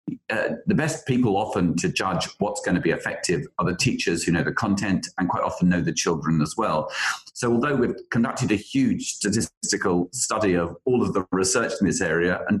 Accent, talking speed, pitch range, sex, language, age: British, 210 wpm, 95-125 Hz, male, English, 40-59